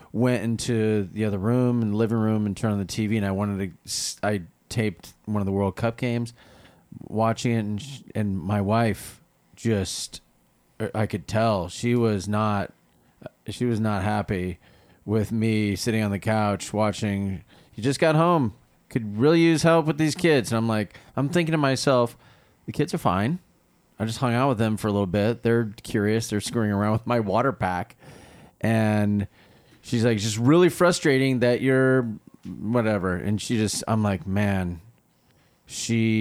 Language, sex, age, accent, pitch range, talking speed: English, male, 30-49, American, 100-120 Hz, 175 wpm